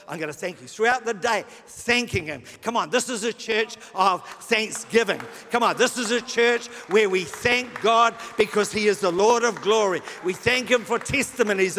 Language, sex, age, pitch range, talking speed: English, male, 60-79, 220-270 Hz, 205 wpm